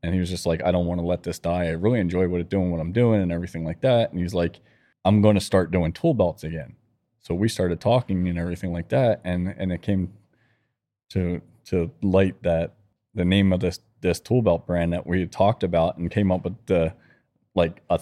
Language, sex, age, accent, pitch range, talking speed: English, male, 20-39, American, 85-95 Hz, 235 wpm